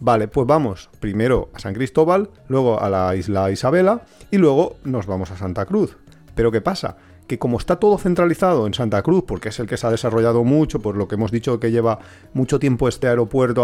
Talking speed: 215 wpm